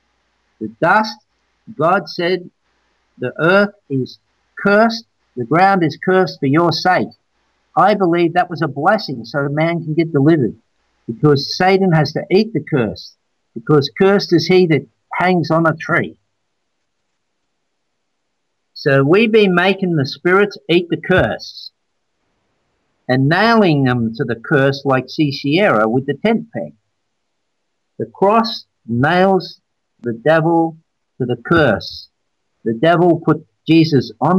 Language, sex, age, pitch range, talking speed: English, male, 50-69, 130-180 Hz, 140 wpm